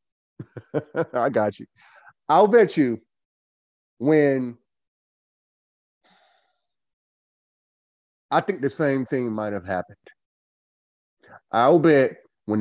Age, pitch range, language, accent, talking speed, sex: 30-49, 95-130 Hz, English, American, 85 wpm, male